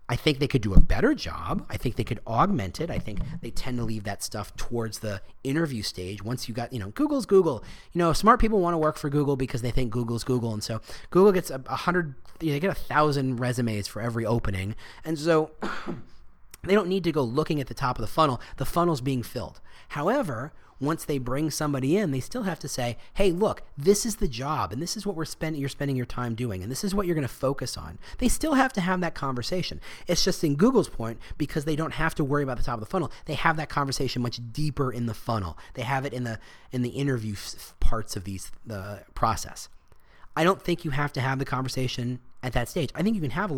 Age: 30-49